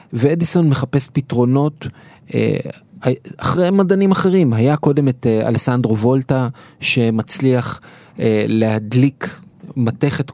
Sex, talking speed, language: male, 80 wpm, Hebrew